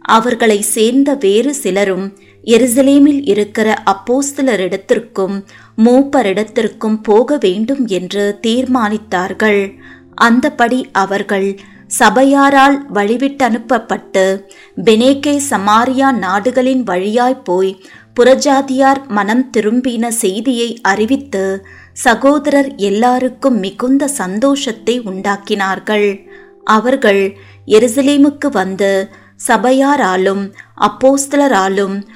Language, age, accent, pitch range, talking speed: Tamil, 20-39, native, 200-265 Hz, 65 wpm